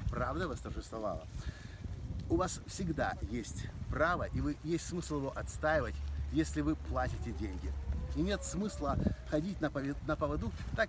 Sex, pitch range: male, 105-155 Hz